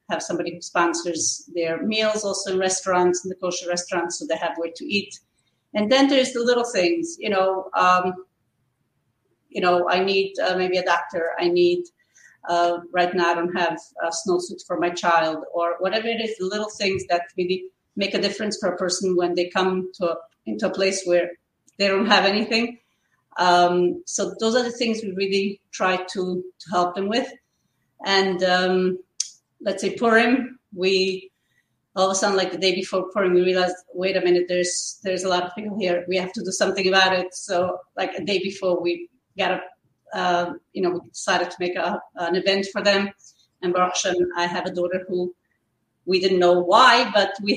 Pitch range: 180-200 Hz